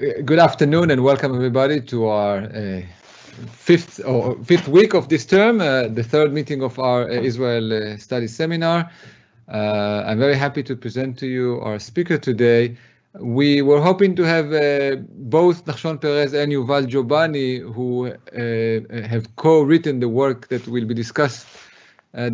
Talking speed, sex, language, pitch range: 160 wpm, male, English, 120-150 Hz